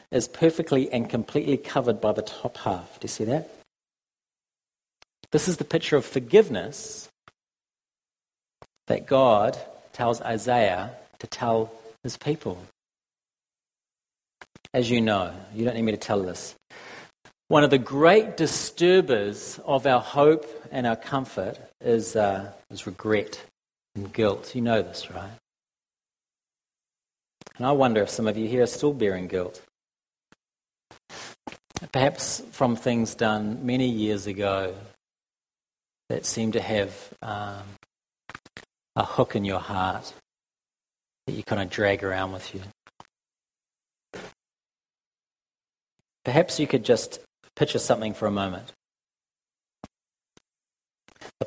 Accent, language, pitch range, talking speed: Australian, English, 105-135 Hz, 120 wpm